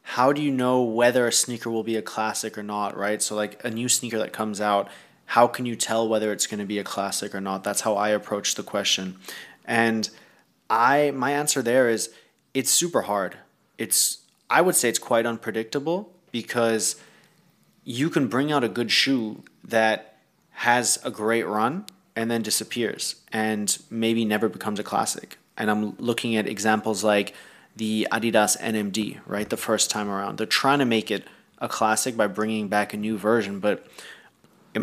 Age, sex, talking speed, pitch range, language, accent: 20-39, male, 185 wpm, 105-115 Hz, English, Canadian